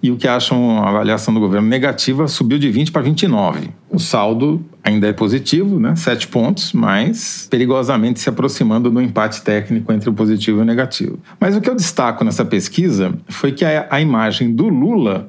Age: 40-59